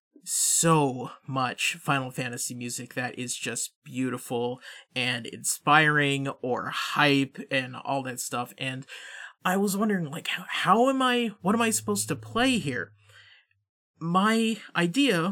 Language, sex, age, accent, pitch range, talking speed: English, male, 30-49, American, 135-180 Hz, 135 wpm